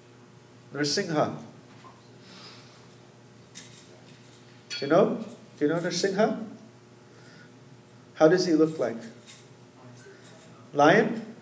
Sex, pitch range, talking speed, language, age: male, 120-165 Hz, 75 wpm, English, 30-49